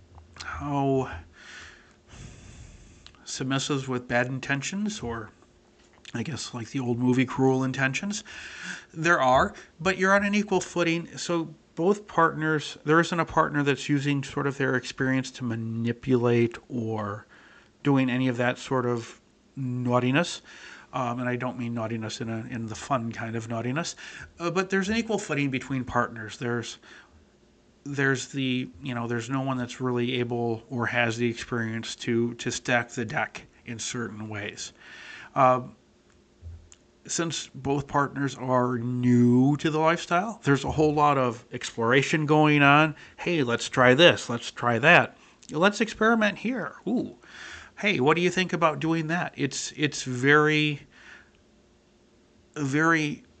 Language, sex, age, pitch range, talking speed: English, male, 40-59, 120-155 Hz, 145 wpm